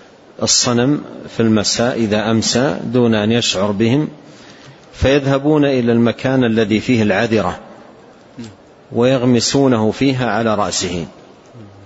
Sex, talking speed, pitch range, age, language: male, 95 wpm, 110-135 Hz, 40-59, Arabic